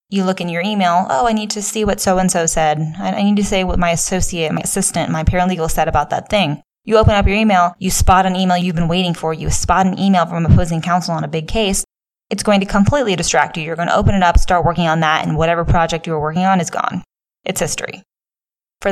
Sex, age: female, 10-29